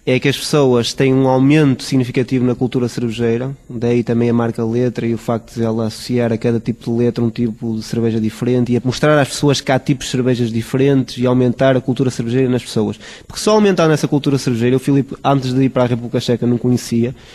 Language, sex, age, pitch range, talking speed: Portuguese, male, 20-39, 120-150 Hz, 230 wpm